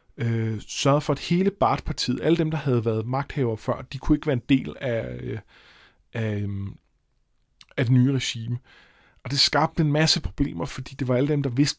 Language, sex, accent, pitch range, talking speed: Danish, male, native, 115-135 Hz, 190 wpm